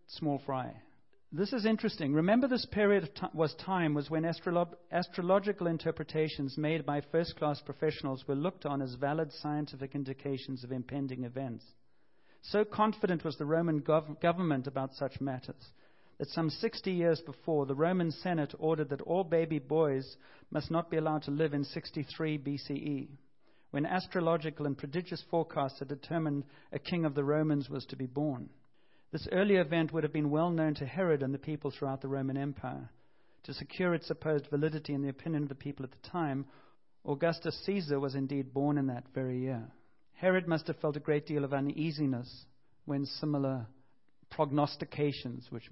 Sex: male